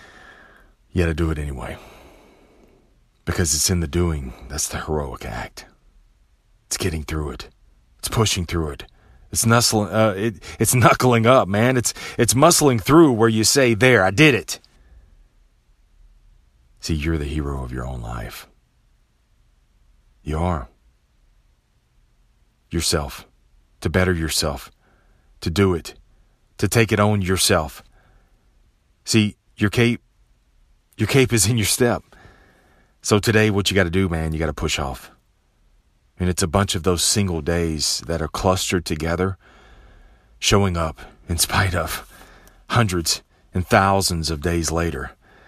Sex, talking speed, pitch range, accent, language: male, 140 wpm, 75-110 Hz, American, English